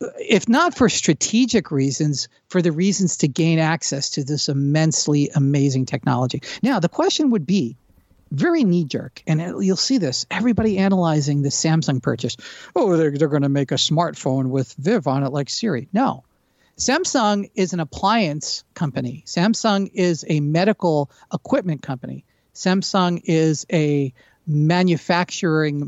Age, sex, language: 50-69, male, English